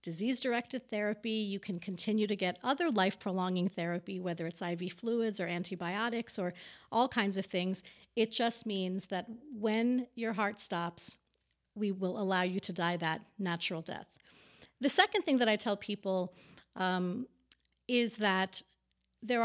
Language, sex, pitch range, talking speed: English, female, 185-225 Hz, 150 wpm